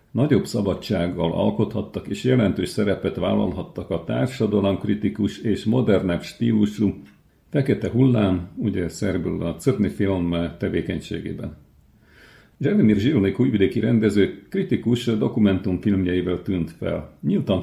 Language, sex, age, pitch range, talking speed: Hungarian, male, 50-69, 90-110 Hz, 100 wpm